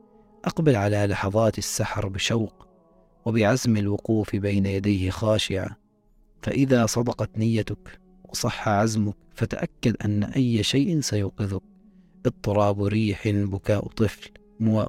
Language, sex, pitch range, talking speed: Arabic, male, 100-125 Hz, 100 wpm